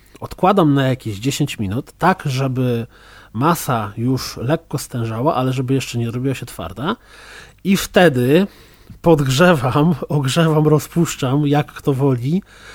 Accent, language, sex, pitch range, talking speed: native, Polish, male, 135-170 Hz, 120 wpm